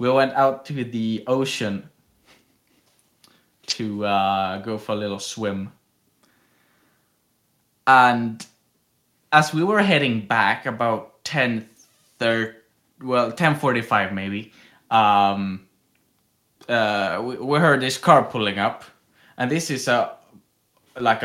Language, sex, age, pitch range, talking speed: English, male, 20-39, 110-135 Hz, 105 wpm